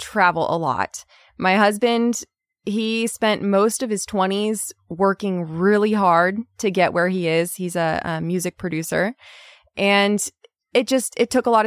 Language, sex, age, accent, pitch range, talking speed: English, female, 20-39, American, 180-225 Hz, 160 wpm